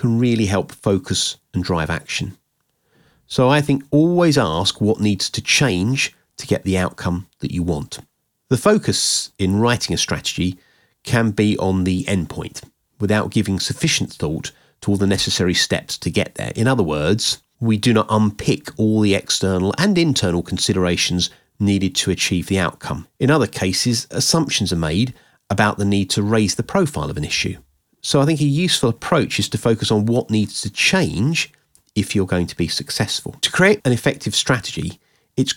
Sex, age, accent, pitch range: male, 30-49, British, 95-135 Hz